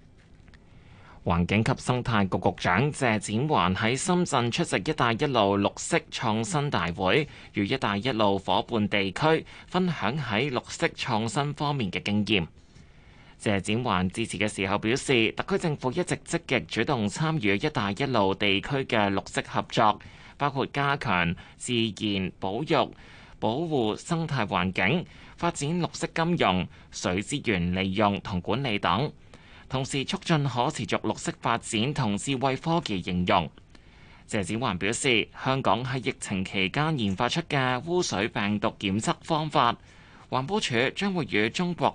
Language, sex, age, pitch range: Chinese, male, 20-39, 100-145 Hz